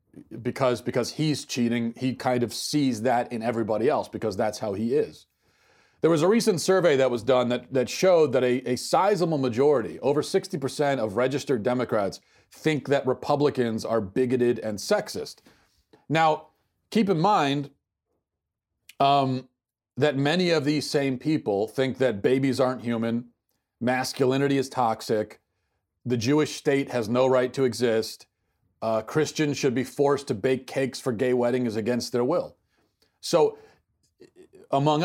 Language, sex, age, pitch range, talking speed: English, male, 40-59, 120-150 Hz, 150 wpm